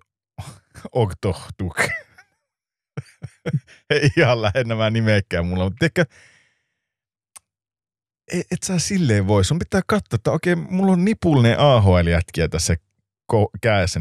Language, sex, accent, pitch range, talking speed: Finnish, male, native, 95-145 Hz, 105 wpm